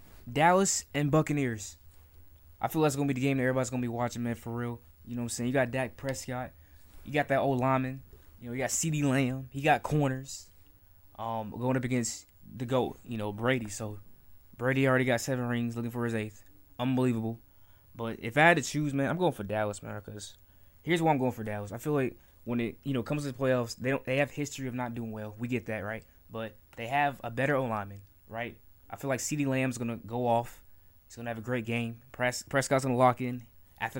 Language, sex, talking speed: English, male, 240 wpm